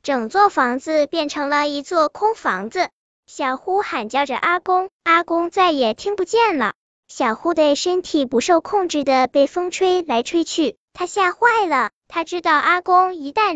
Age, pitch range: 10-29, 280-370 Hz